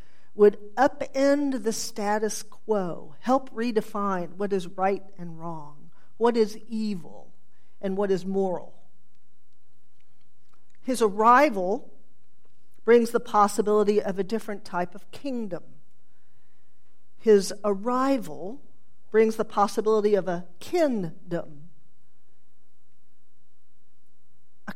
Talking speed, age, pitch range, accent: 95 wpm, 50-69, 185-235 Hz, American